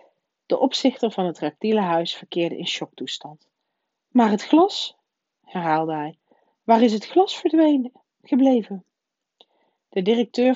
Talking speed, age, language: 125 wpm, 40-59, Dutch